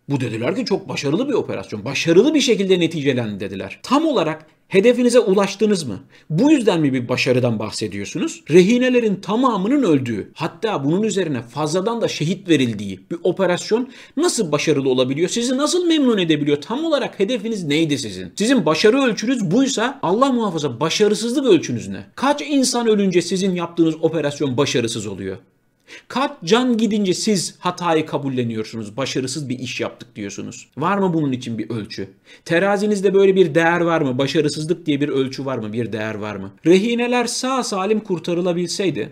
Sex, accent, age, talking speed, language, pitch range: male, native, 50-69, 155 wpm, Turkish, 130-210 Hz